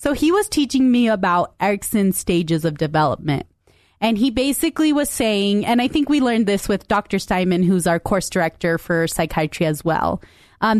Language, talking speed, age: English, 185 wpm, 30-49